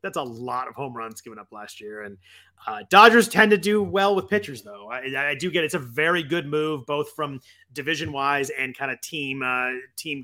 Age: 30-49